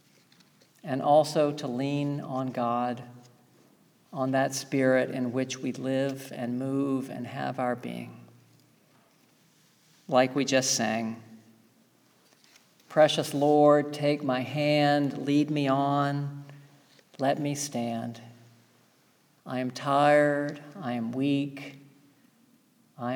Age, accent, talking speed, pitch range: 50-69, American, 105 wpm, 125-145 Hz